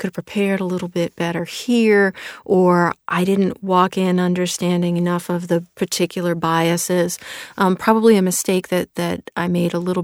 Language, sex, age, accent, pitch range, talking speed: English, female, 40-59, American, 175-200 Hz, 175 wpm